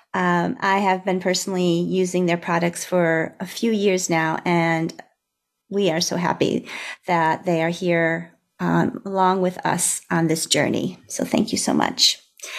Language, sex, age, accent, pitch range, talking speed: English, female, 40-59, American, 180-215 Hz, 160 wpm